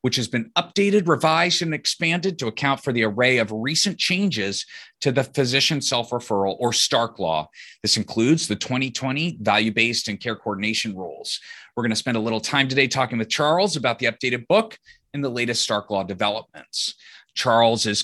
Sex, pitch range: male, 105-135 Hz